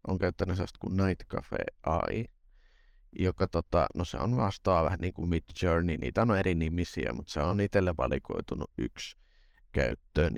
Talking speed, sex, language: 170 wpm, male, Finnish